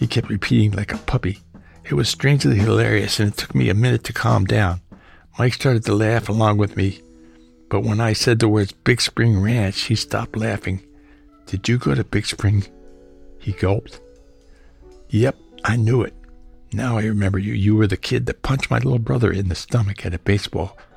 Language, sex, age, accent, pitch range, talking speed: English, male, 60-79, American, 95-115 Hz, 195 wpm